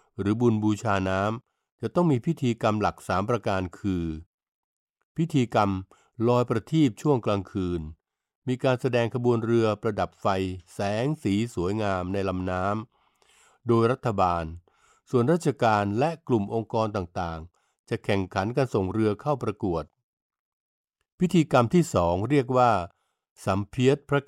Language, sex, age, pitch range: Thai, male, 60-79, 100-130 Hz